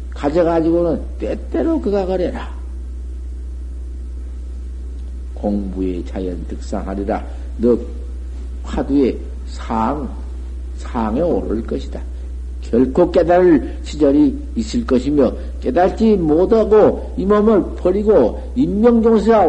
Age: 50-69